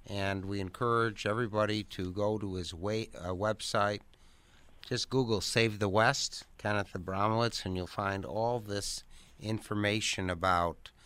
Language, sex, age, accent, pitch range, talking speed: English, male, 60-79, American, 85-105 Hz, 135 wpm